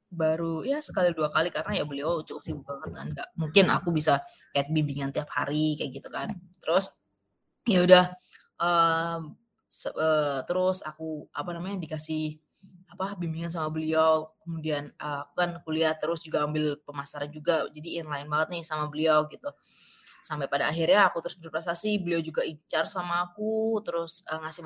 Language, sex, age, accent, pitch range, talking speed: Indonesian, female, 20-39, native, 155-185 Hz, 170 wpm